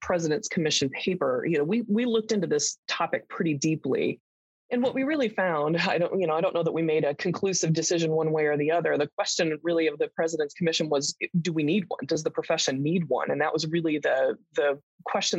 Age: 30-49